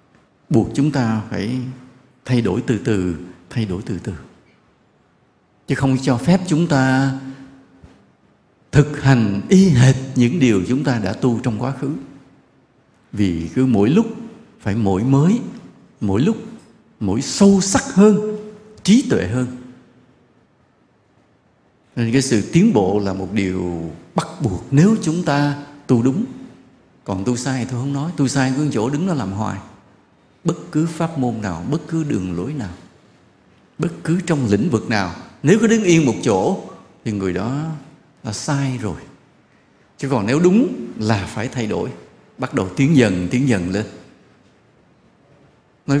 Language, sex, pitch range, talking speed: English, male, 105-145 Hz, 160 wpm